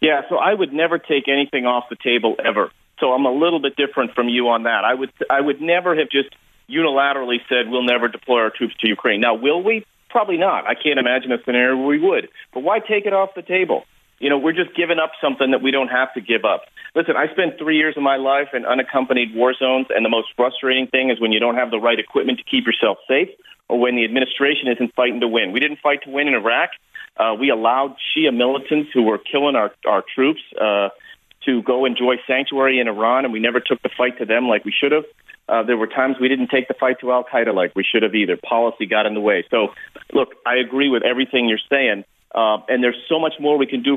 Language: English